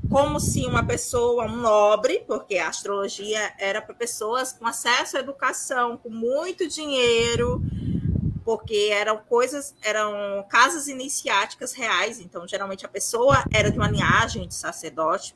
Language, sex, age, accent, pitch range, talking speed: Portuguese, female, 20-39, Brazilian, 205-270 Hz, 140 wpm